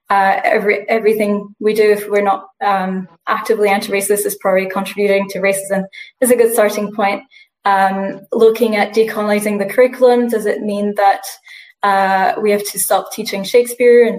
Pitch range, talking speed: 195-225 Hz, 170 wpm